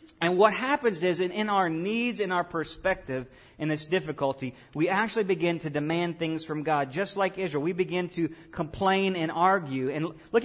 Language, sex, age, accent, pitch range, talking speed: English, male, 40-59, American, 150-200 Hz, 190 wpm